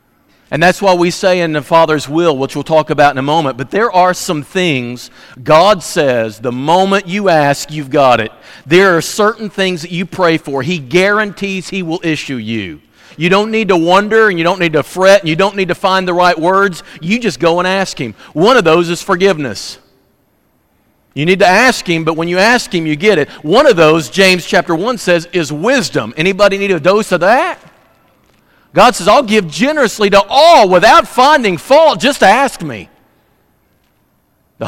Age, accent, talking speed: 50-69, American, 200 wpm